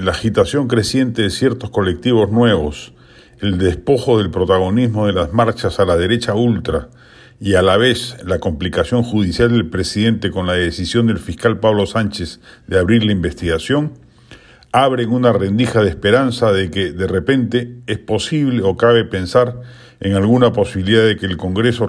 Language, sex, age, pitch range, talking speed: Spanish, male, 40-59, 100-125 Hz, 160 wpm